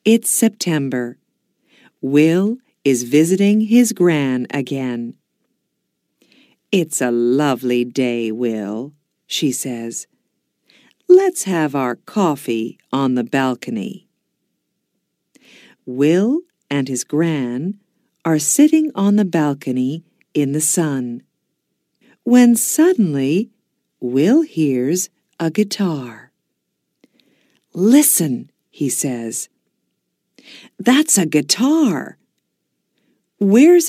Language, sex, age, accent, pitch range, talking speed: Russian, female, 50-69, American, 130-220 Hz, 85 wpm